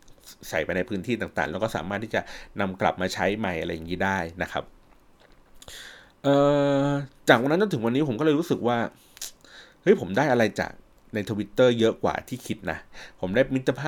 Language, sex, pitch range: Thai, male, 95-120 Hz